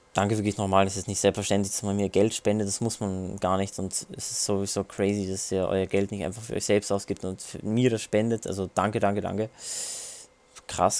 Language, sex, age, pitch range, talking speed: German, male, 20-39, 100-135 Hz, 225 wpm